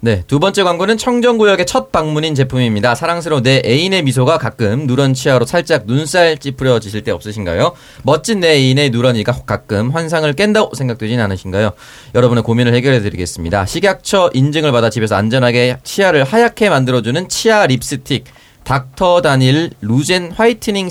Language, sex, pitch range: Korean, male, 115-160 Hz